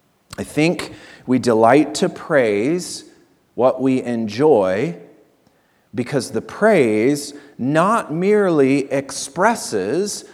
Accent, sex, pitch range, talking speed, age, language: American, male, 105-140 Hz, 85 wpm, 30-49, English